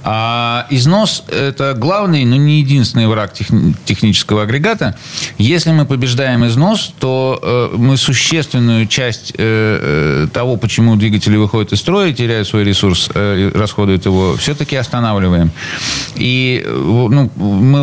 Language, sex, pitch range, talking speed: Russian, male, 110-140 Hz, 115 wpm